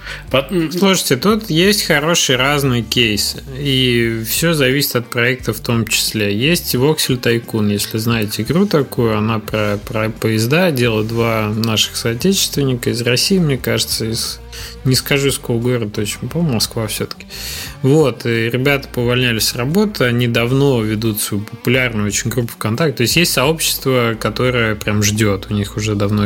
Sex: male